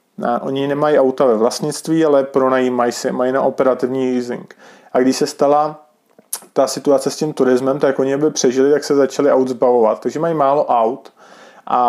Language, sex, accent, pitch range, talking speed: Czech, male, native, 125-135 Hz, 180 wpm